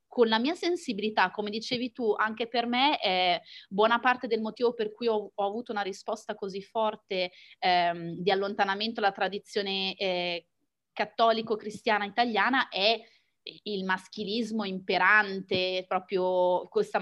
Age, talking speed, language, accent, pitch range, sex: 20-39, 130 wpm, Italian, native, 195-235 Hz, female